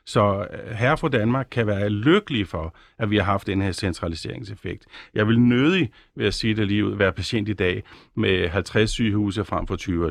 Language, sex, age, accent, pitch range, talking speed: Danish, male, 50-69, native, 100-125 Hz, 210 wpm